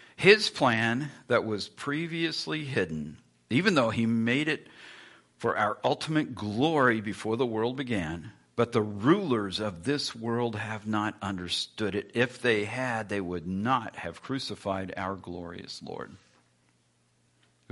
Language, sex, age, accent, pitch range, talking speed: English, male, 50-69, American, 85-125 Hz, 140 wpm